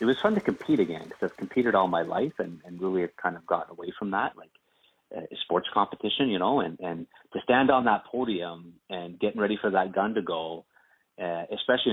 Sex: male